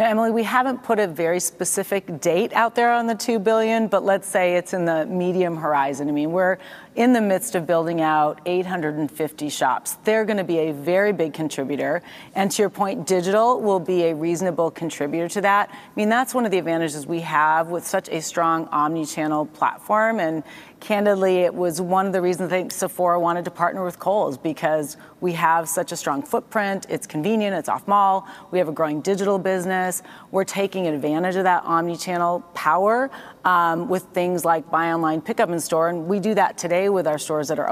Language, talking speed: English, 205 wpm